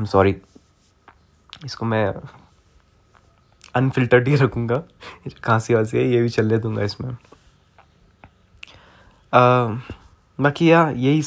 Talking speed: 85 wpm